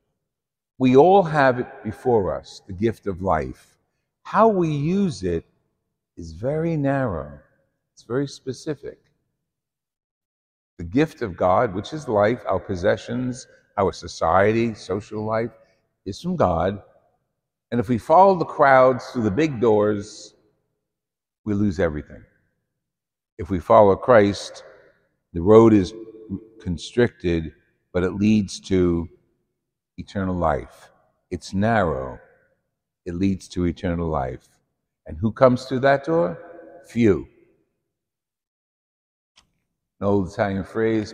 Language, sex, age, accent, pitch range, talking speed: English, male, 60-79, American, 95-130 Hz, 120 wpm